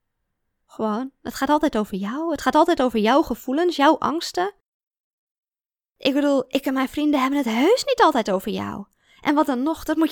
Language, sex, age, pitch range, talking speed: Dutch, female, 20-39, 205-320 Hz, 195 wpm